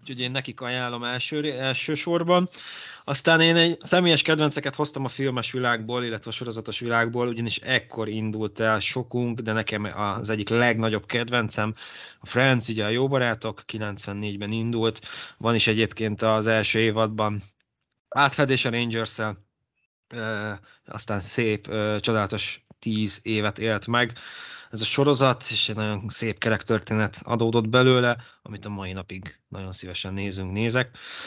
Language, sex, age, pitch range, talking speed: Hungarian, male, 20-39, 105-130 Hz, 140 wpm